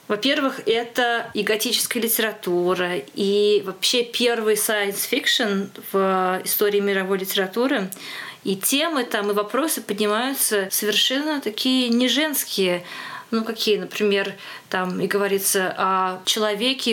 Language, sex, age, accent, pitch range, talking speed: Russian, female, 20-39, native, 190-220 Hz, 105 wpm